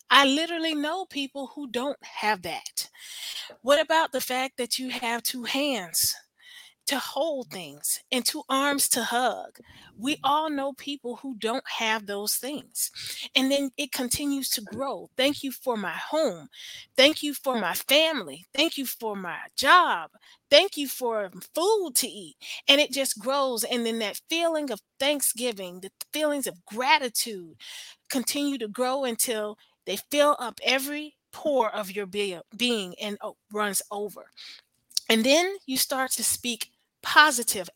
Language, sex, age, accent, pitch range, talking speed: English, female, 30-49, American, 225-290 Hz, 155 wpm